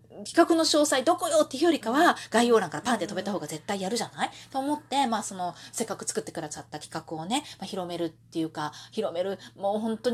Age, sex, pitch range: 30-49, female, 165-265 Hz